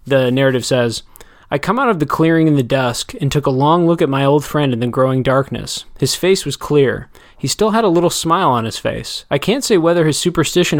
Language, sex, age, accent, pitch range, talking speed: English, male, 20-39, American, 130-155 Hz, 245 wpm